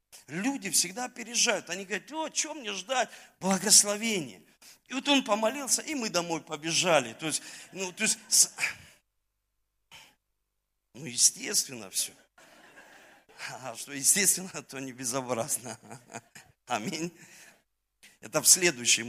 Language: Russian